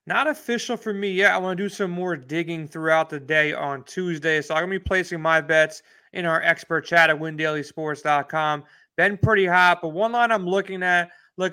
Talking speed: 215 wpm